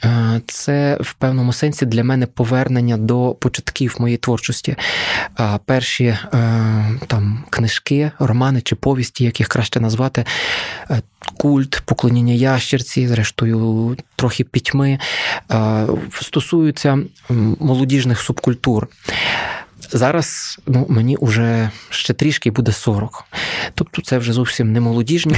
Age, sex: 20-39, male